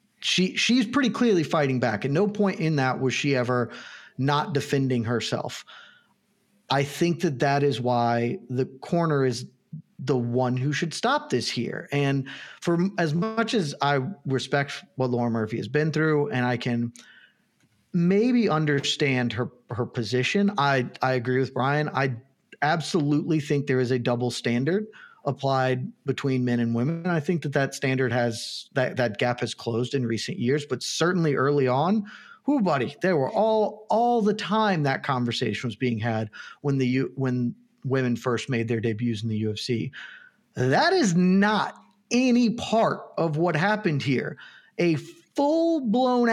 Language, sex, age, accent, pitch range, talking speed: English, male, 40-59, American, 125-195 Hz, 165 wpm